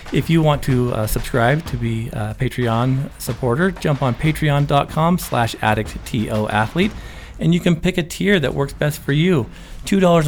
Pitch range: 115-160 Hz